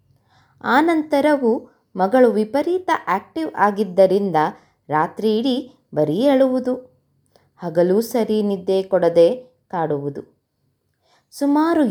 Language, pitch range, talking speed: Kannada, 175-255 Hz, 80 wpm